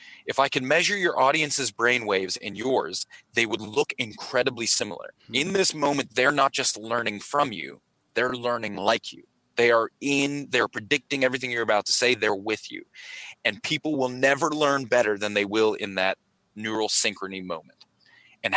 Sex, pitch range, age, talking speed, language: male, 110-140 Hz, 30-49, 180 wpm, English